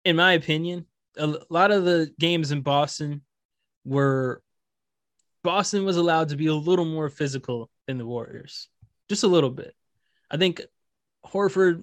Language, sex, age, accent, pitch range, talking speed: English, male, 20-39, American, 135-175 Hz, 150 wpm